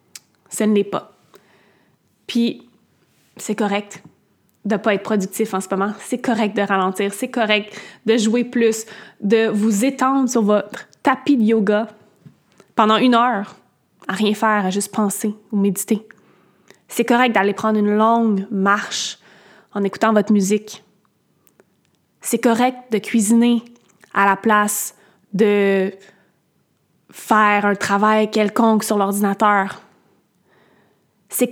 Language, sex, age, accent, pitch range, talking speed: French, female, 20-39, Canadian, 200-230 Hz, 130 wpm